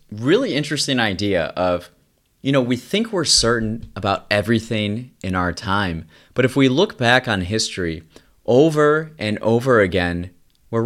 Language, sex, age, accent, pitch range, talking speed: English, male, 30-49, American, 100-135 Hz, 150 wpm